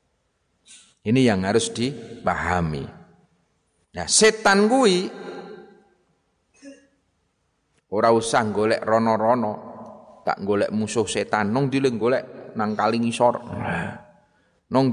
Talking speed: 90 wpm